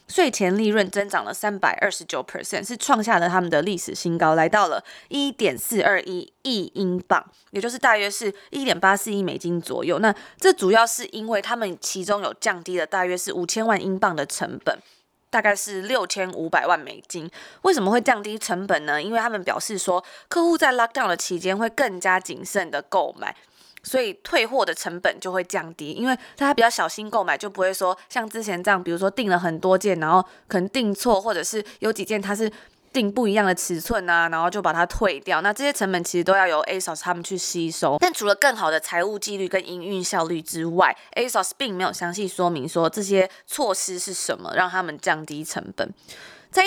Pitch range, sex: 180-225 Hz, female